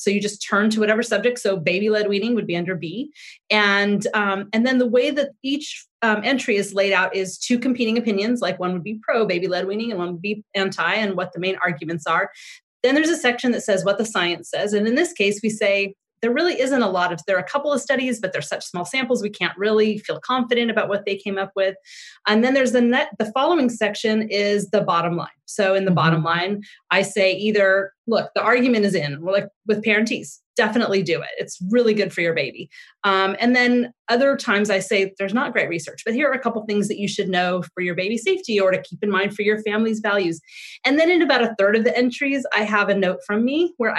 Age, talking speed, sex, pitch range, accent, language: 30-49, 250 wpm, female, 195-240 Hz, American, English